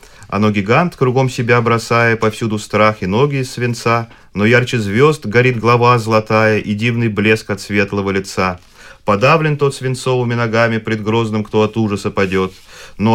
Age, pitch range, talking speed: 30-49, 100-125 Hz, 155 wpm